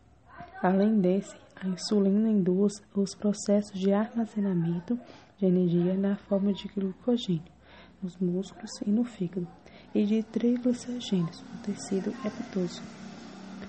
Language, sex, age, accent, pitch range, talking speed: English, female, 20-39, Brazilian, 190-220 Hz, 120 wpm